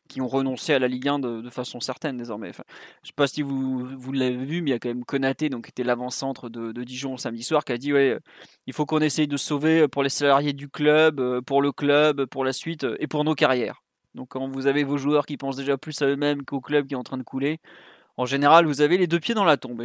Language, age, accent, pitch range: French, 20-39, French, 135-155 Hz